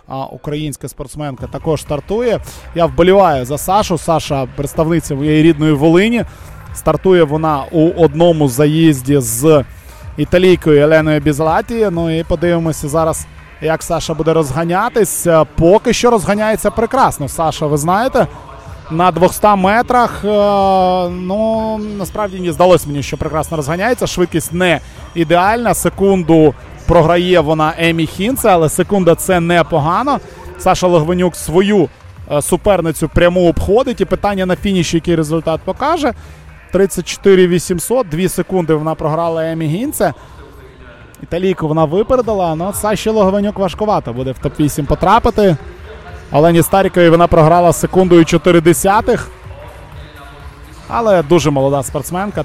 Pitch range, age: 150-185 Hz, 20-39